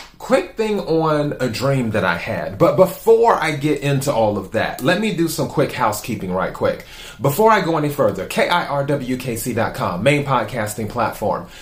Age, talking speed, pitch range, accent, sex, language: 30-49, 170 wpm, 110-140 Hz, American, male, English